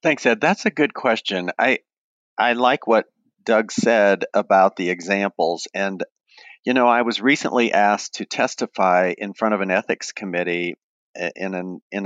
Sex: male